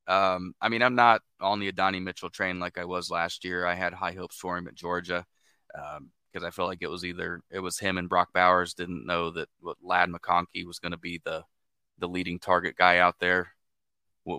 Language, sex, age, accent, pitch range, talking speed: English, male, 20-39, American, 85-90 Hz, 230 wpm